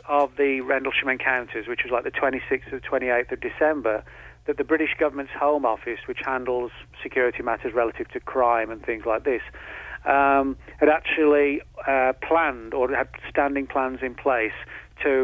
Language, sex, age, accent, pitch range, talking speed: English, male, 40-59, British, 120-140 Hz, 165 wpm